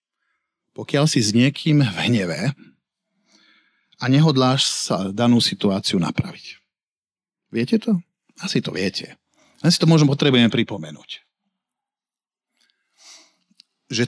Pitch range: 125-180 Hz